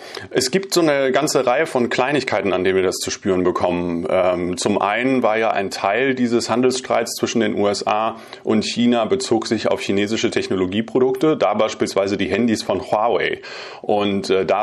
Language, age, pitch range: German, 30-49, 100-125 Hz